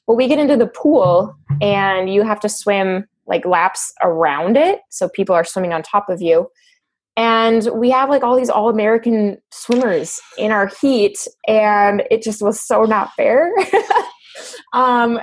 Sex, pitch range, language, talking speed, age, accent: female, 190-235 Hz, English, 170 wpm, 20-39, American